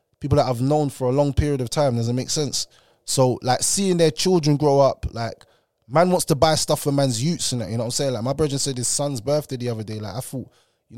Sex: male